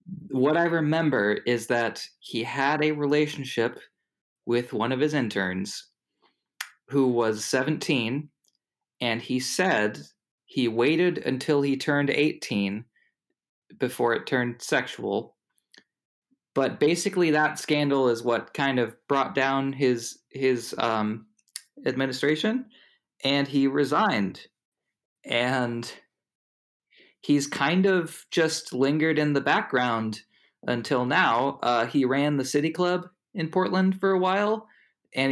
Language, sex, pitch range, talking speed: English, male, 120-155 Hz, 120 wpm